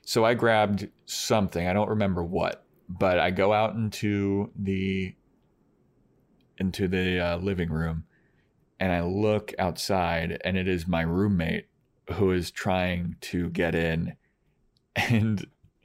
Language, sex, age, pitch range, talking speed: English, male, 30-49, 85-105 Hz, 135 wpm